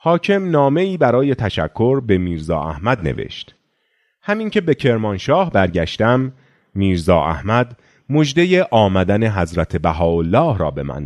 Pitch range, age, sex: 95-145 Hz, 30-49, male